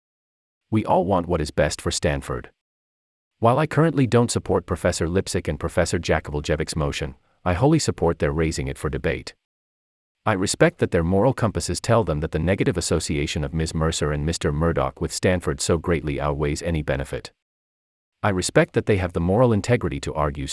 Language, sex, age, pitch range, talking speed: English, male, 40-59, 75-110 Hz, 180 wpm